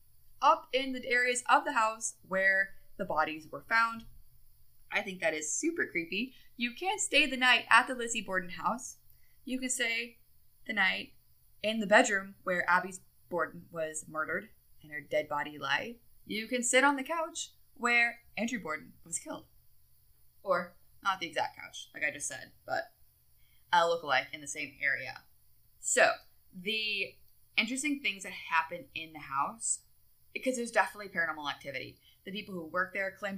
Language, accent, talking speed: English, American, 165 wpm